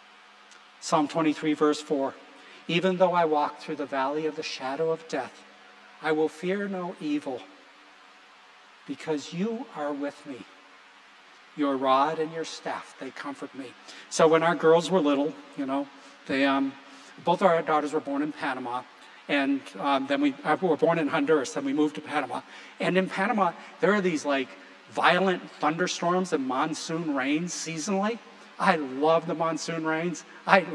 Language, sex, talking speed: English, male, 165 wpm